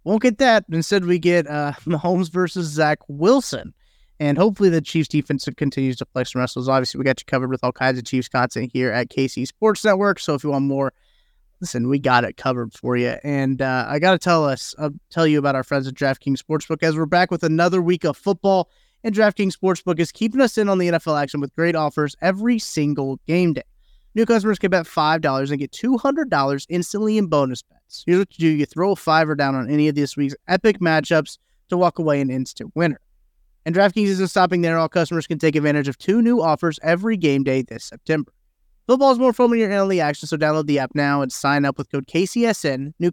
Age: 30-49